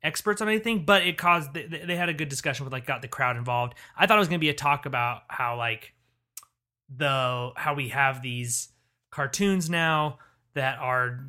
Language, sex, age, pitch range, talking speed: English, male, 30-49, 130-175 Hz, 195 wpm